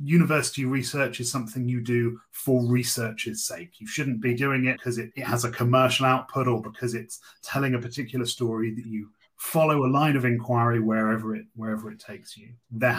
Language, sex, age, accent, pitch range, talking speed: English, male, 40-59, British, 115-140 Hz, 195 wpm